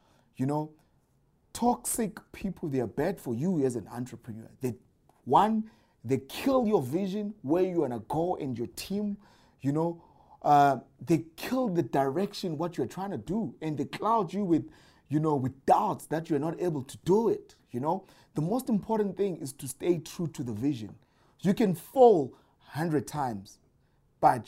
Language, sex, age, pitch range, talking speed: English, male, 30-49, 135-200 Hz, 180 wpm